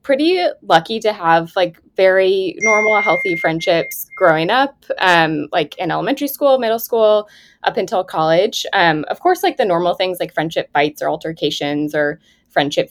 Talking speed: 165 wpm